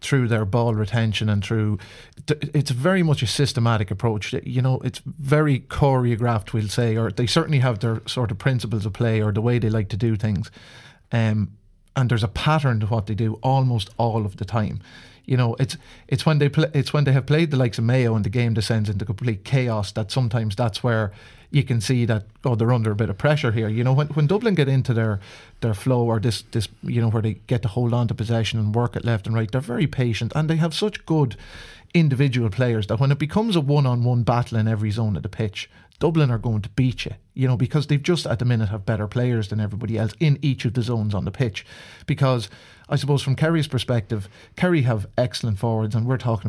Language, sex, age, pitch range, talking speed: English, male, 30-49, 110-130 Hz, 240 wpm